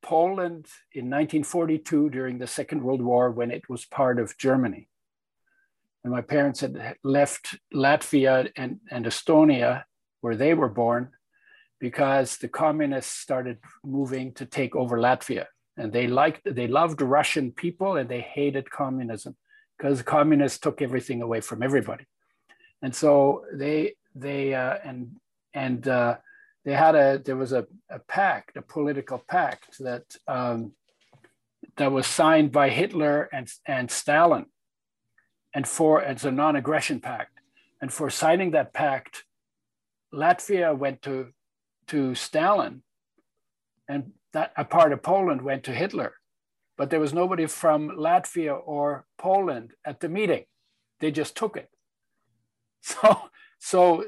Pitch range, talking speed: 130-160 Hz, 140 wpm